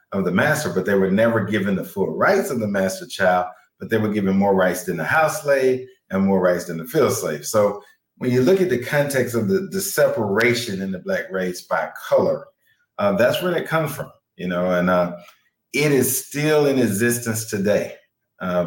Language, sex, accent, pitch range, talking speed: English, male, American, 90-115 Hz, 210 wpm